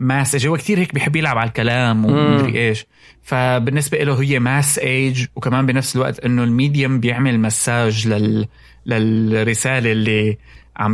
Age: 20-39